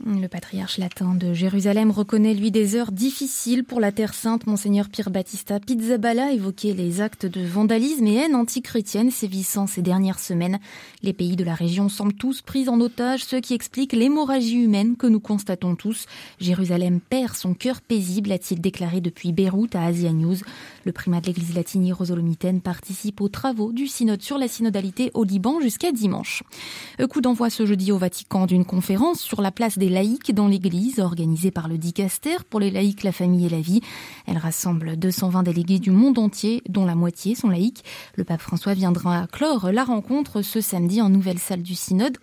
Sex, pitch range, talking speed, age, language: female, 185-235 Hz, 190 wpm, 20-39, French